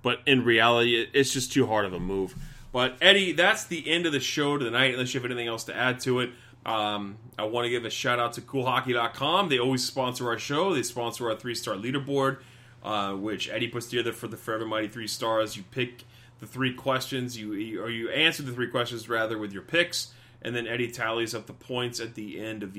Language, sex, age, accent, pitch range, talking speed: English, male, 30-49, American, 110-130 Hz, 225 wpm